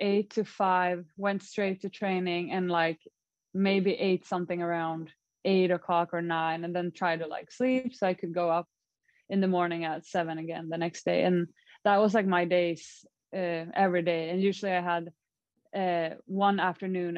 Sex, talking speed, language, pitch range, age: female, 185 wpm, English, 170-195 Hz, 20-39